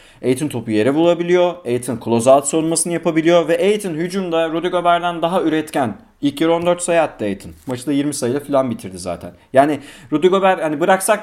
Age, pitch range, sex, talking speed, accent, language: 40-59, 115-180 Hz, male, 160 wpm, native, Turkish